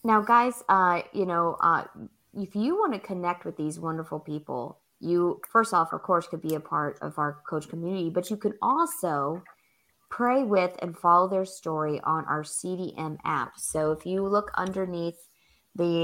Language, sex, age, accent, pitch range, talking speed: English, female, 20-39, American, 165-215 Hz, 180 wpm